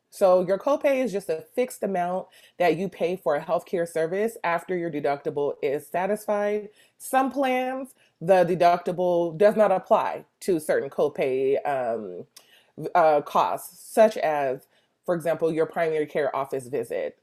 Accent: American